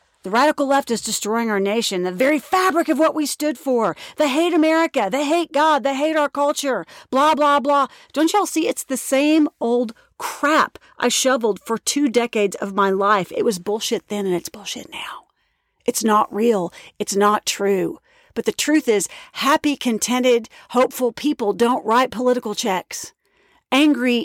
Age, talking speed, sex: 40-59, 175 wpm, female